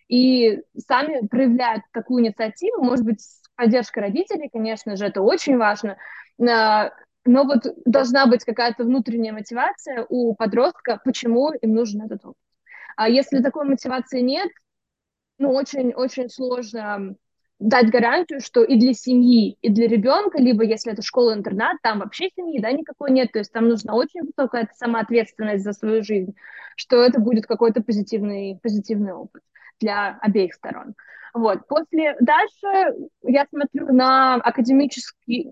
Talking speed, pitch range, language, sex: 140 wpm, 230-275 Hz, Russian, female